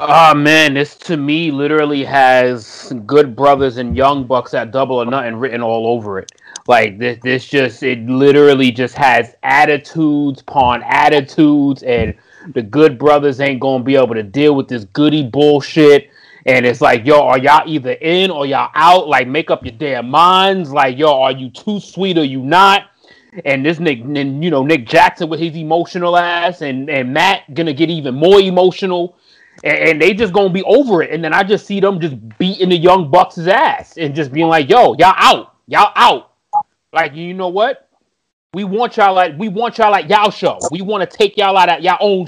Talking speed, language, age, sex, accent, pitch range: 205 wpm, English, 30-49, male, American, 135-175 Hz